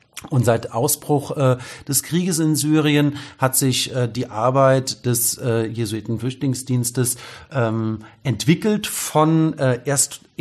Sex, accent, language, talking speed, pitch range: male, German, German, 115 wpm, 110-145 Hz